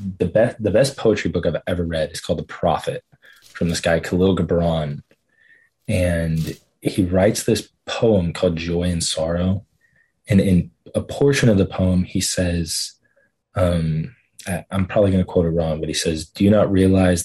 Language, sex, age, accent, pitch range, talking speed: English, male, 20-39, American, 85-95 Hz, 180 wpm